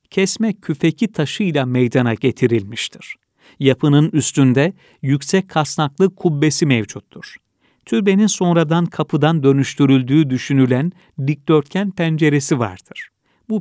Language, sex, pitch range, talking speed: Turkish, male, 130-170 Hz, 90 wpm